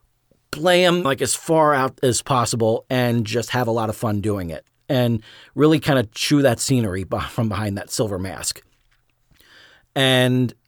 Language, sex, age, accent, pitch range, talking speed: English, male, 40-59, American, 115-140 Hz, 170 wpm